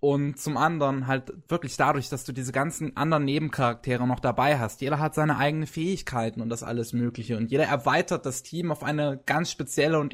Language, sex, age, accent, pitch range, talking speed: German, male, 20-39, German, 120-155 Hz, 200 wpm